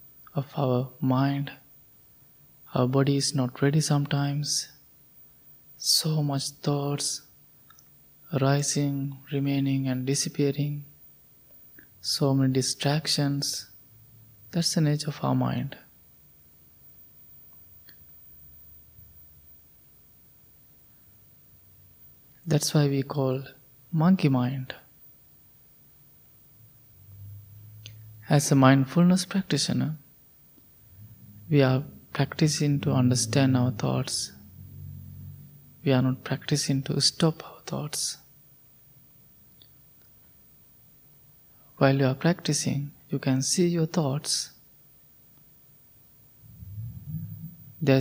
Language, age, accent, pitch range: English, 20-39, Indian, 125-145 Hz